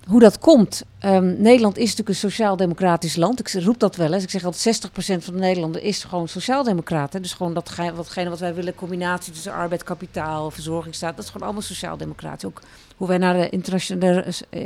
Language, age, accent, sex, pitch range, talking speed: Dutch, 40-59, Dutch, female, 175-215 Hz, 205 wpm